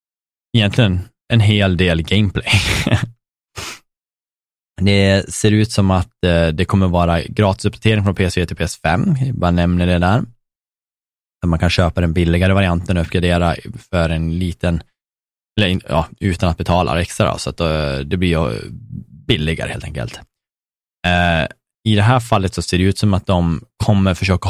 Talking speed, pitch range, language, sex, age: 150 wpm, 85-100 Hz, Swedish, male, 20-39